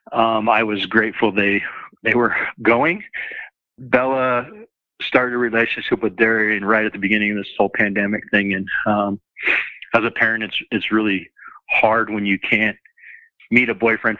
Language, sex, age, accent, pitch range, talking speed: English, male, 40-59, American, 105-115 Hz, 160 wpm